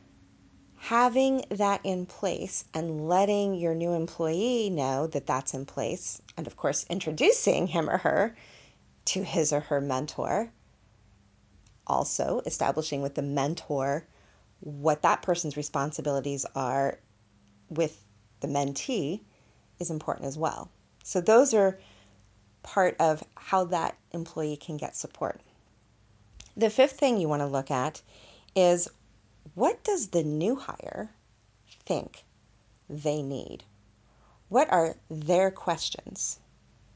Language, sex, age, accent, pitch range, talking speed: English, female, 30-49, American, 110-175 Hz, 120 wpm